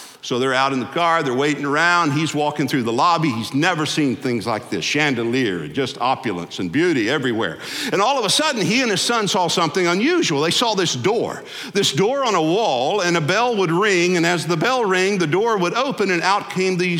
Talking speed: 225 wpm